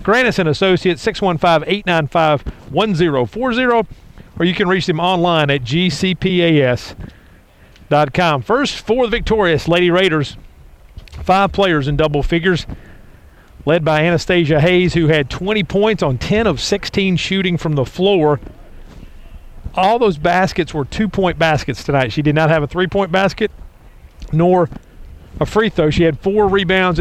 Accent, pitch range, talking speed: American, 145-190 Hz, 140 wpm